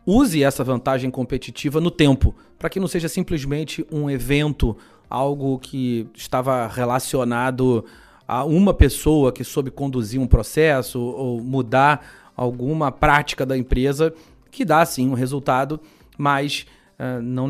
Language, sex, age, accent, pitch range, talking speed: Portuguese, male, 30-49, Brazilian, 130-160 Hz, 130 wpm